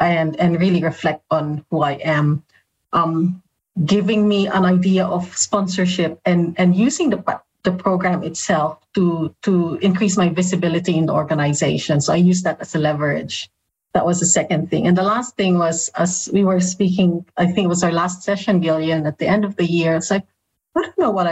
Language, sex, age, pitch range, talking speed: English, female, 40-59, 165-200 Hz, 200 wpm